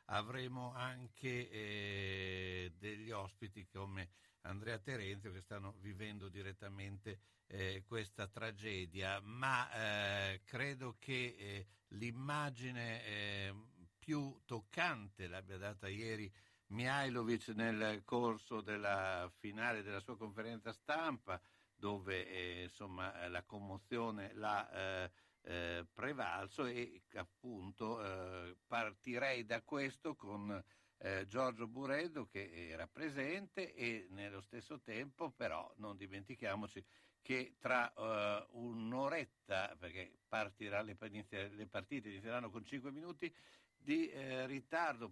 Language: Italian